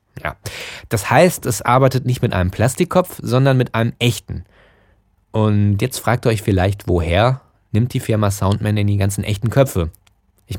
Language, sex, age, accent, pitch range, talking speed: German, male, 20-39, German, 100-130 Hz, 170 wpm